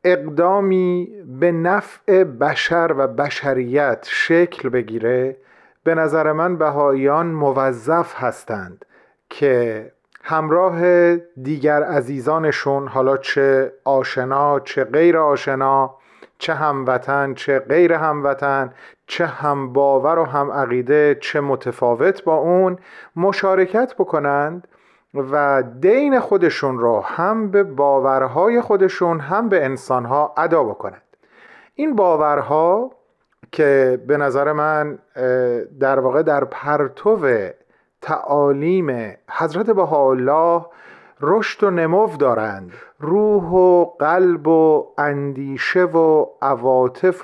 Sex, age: male, 40-59